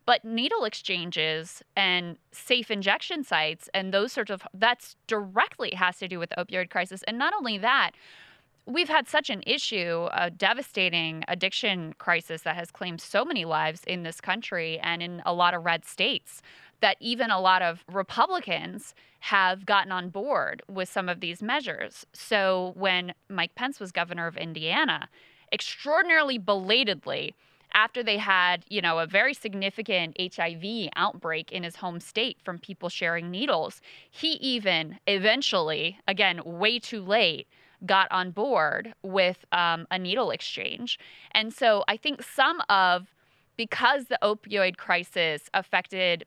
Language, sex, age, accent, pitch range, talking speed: English, female, 20-39, American, 175-225 Hz, 155 wpm